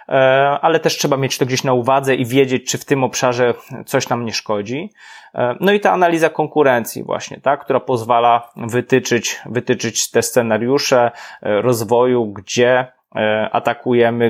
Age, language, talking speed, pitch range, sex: 20-39, Polish, 145 wpm, 120-145 Hz, male